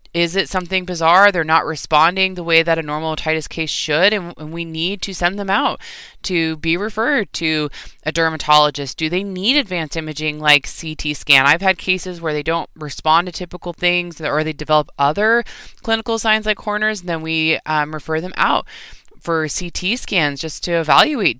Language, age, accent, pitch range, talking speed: English, 20-39, American, 150-185 Hz, 190 wpm